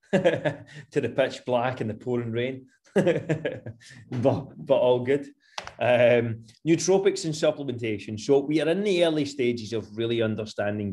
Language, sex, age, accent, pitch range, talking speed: English, male, 30-49, British, 110-140 Hz, 145 wpm